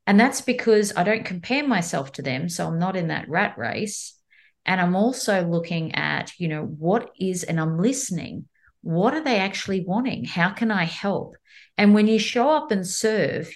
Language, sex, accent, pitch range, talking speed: English, female, Australian, 160-215 Hz, 195 wpm